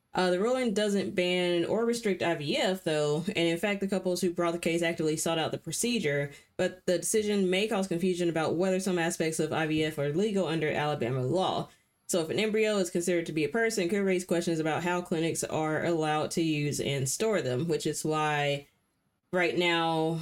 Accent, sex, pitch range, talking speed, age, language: American, female, 150-190 Hz, 205 wpm, 20-39, English